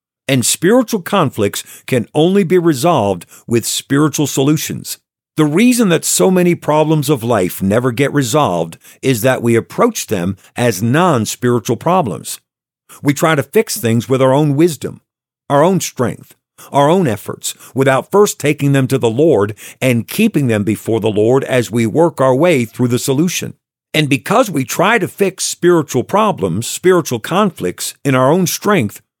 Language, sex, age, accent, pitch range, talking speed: English, male, 50-69, American, 120-170 Hz, 160 wpm